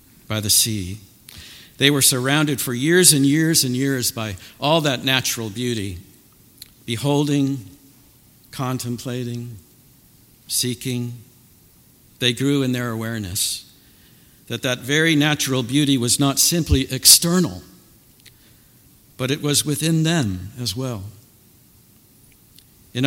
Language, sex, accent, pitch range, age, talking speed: English, male, American, 110-140 Hz, 60-79, 110 wpm